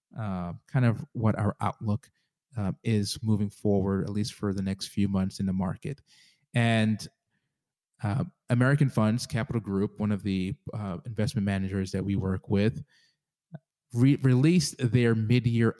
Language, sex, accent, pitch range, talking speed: English, male, American, 100-125 Hz, 150 wpm